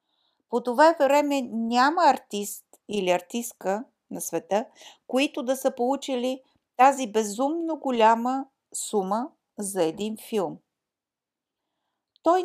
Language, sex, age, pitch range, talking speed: Bulgarian, female, 50-69, 215-280 Hz, 100 wpm